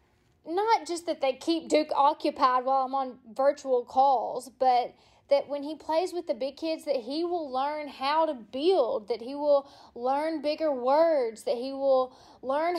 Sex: female